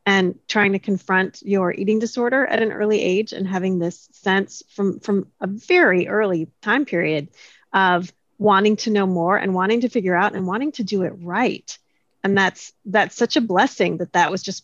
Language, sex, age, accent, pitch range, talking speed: English, female, 30-49, American, 185-215 Hz, 195 wpm